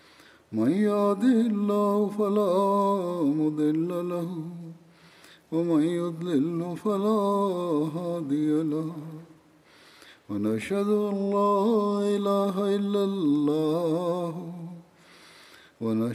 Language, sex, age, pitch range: Malayalam, male, 50-69, 155-200 Hz